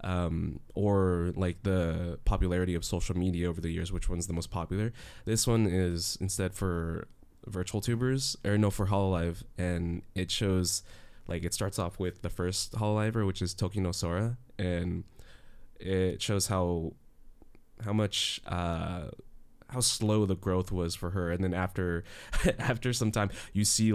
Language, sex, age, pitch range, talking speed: English, male, 20-39, 90-105 Hz, 165 wpm